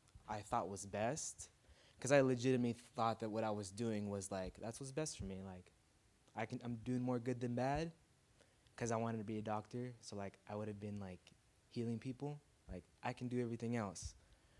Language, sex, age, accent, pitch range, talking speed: English, male, 20-39, American, 100-115 Hz, 210 wpm